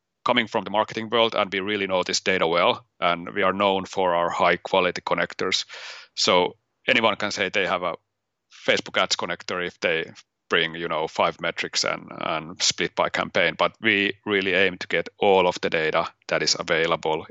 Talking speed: 195 wpm